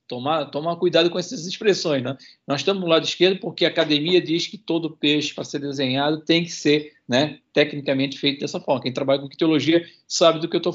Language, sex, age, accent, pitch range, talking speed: Portuguese, male, 50-69, Brazilian, 145-185 Hz, 220 wpm